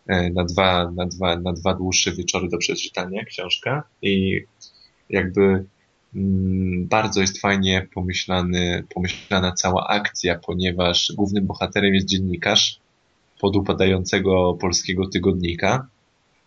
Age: 20-39